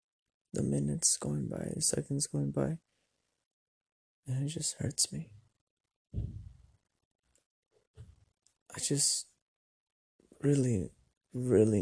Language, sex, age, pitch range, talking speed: English, male, 20-39, 110-130 Hz, 85 wpm